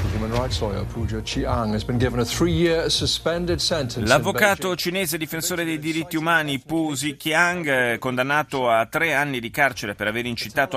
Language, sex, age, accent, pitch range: Italian, male, 30-49, native, 105-145 Hz